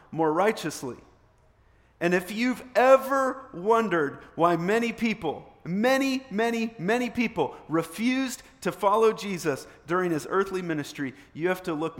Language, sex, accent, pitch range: English, male, American, 130-185 Hz